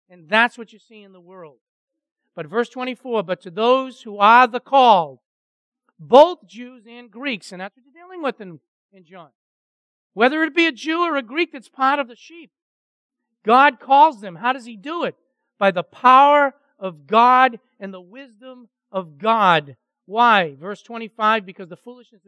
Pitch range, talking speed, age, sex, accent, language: 200-275 Hz, 185 wpm, 50-69, male, American, English